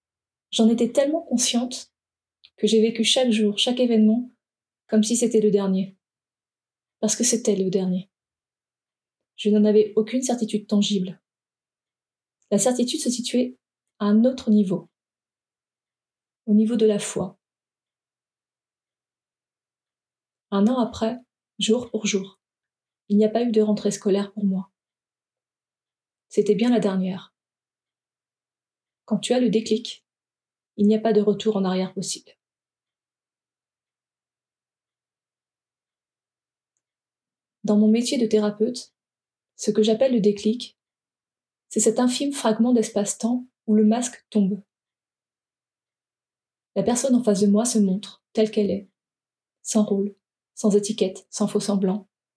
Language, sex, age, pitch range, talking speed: French, female, 30-49, 205-235 Hz, 125 wpm